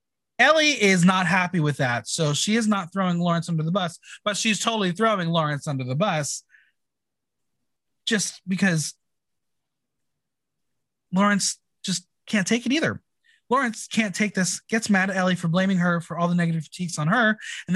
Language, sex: English, male